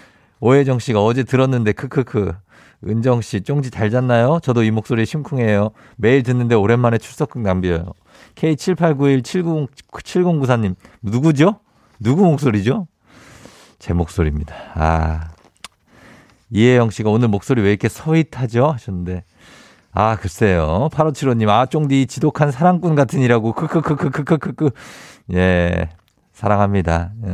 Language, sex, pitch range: Korean, male, 100-145 Hz